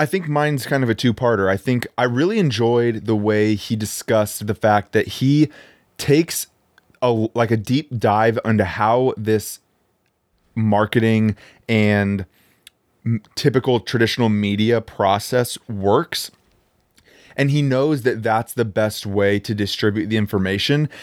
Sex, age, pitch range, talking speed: male, 20-39, 105-125 Hz, 140 wpm